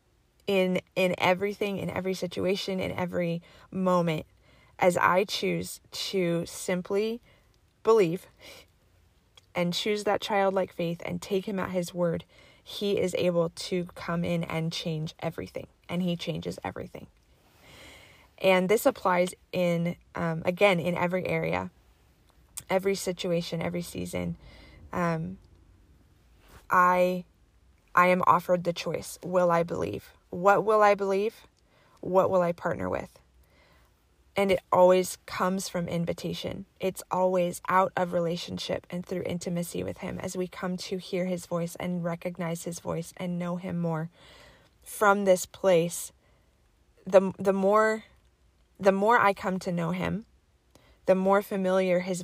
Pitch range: 170-190 Hz